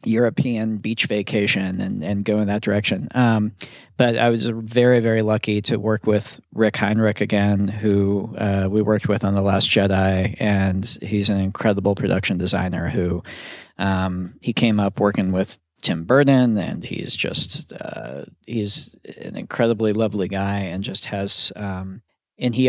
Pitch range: 100-110 Hz